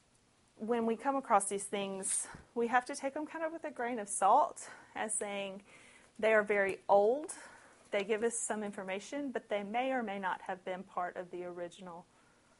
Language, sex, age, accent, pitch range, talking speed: English, female, 30-49, American, 190-240 Hz, 195 wpm